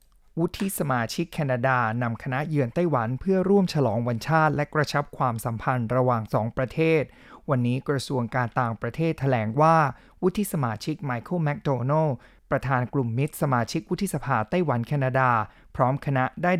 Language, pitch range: Thai, 125-155 Hz